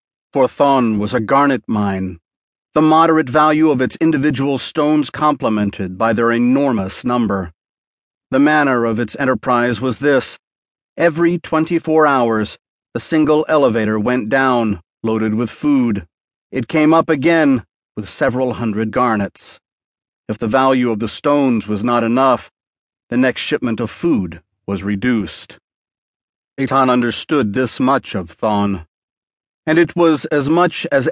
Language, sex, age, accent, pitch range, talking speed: English, male, 40-59, American, 110-145 Hz, 135 wpm